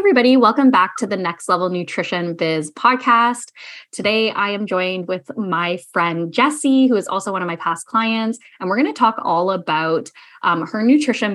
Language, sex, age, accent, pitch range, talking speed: English, female, 20-39, American, 165-220 Hz, 190 wpm